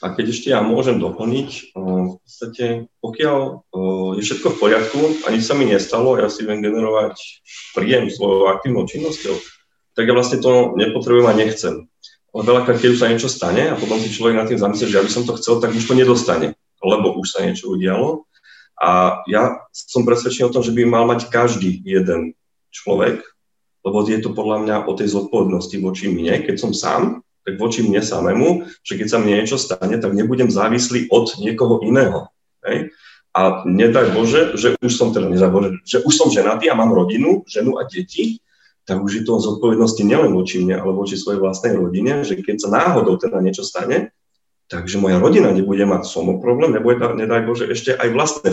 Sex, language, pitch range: male, Slovak, 95-120 Hz